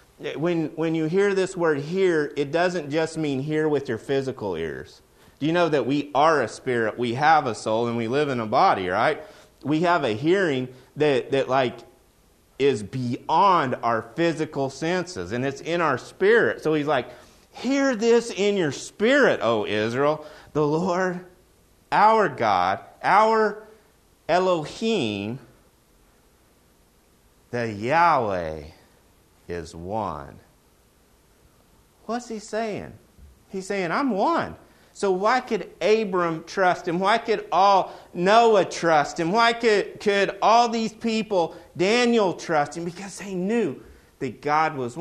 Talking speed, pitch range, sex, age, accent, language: 140 wpm, 125-190 Hz, male, 30-49, American, English